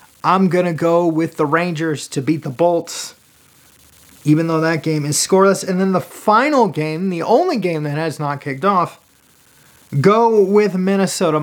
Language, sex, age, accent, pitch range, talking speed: English, male, 30-49, American, 150-195 Hz, 170 wpm